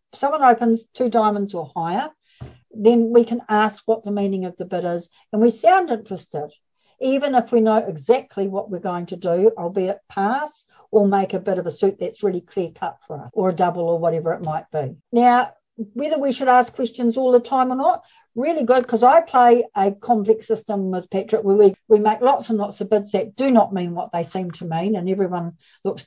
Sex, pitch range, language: female, 185-240 Hz, English